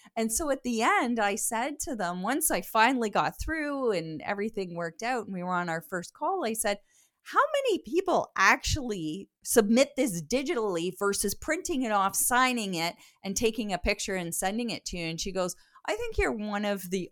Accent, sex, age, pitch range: American, female, 30-49, 195-280 Hz